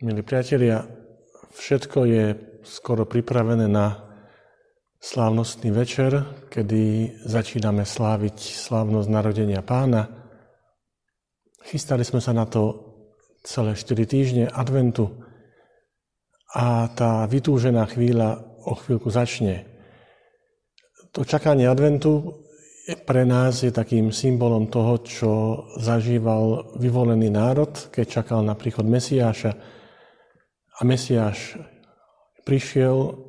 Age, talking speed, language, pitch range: 50-69, 95 wpm, Slovak, 110-130 Hz